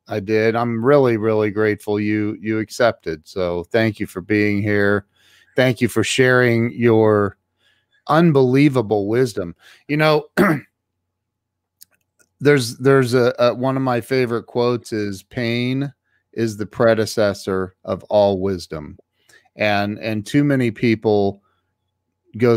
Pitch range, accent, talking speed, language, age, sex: 100-120 Hz, American, 125 wpm, English, 40-59, male